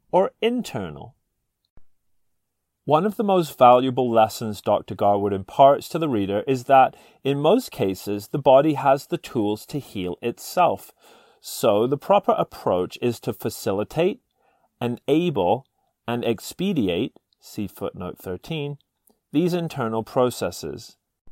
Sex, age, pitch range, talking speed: male, 30-49, 105-145 Hz, 120 wpm